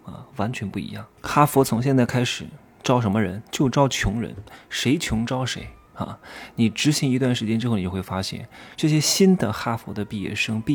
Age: 20-39